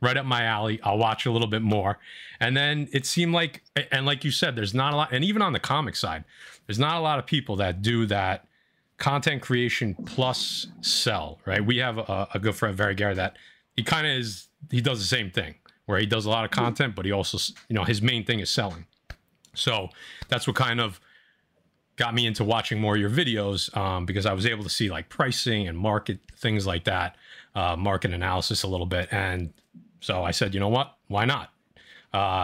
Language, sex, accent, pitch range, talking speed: English, male, American, 100-130 Hz, 225 wpm